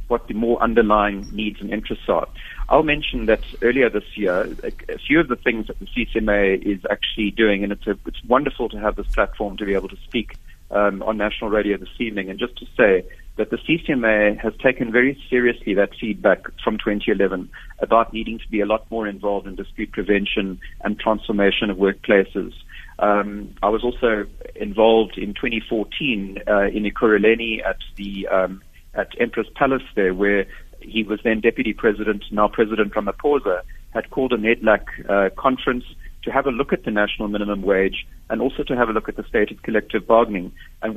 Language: English